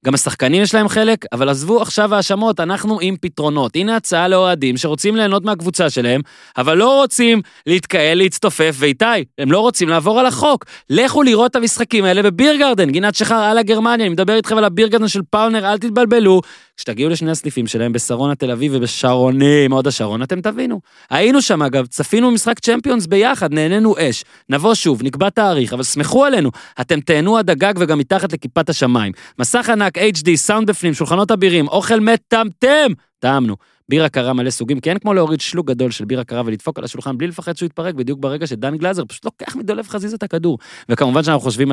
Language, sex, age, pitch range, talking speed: Hebrew, male, 20-39, 145-225 Hz, 150 wpm